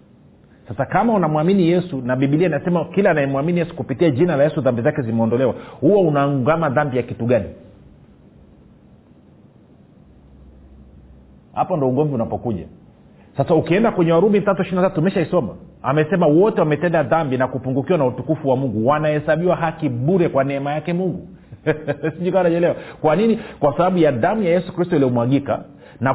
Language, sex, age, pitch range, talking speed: Swahili, male, 40-59, 135-175 Hz, 140 wpm